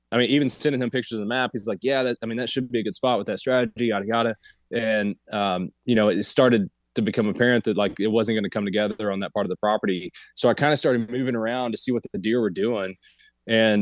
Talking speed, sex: 280 wpm, male